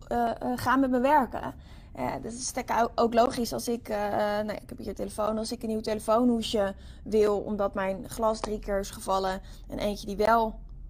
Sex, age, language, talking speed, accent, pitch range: female, 20-39, Dutch, 205 wpm, Dutch, 205-260 Hz